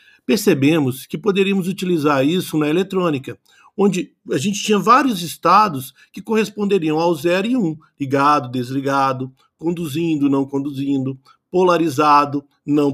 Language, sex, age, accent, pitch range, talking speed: Portuguese, male, 50-69, Brazilian, 145-205 Hz, 120 wpm